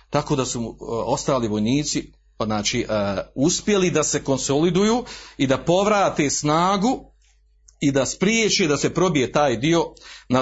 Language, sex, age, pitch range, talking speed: Croatian, male, 40-59, 115-170 Hz, 145 wpm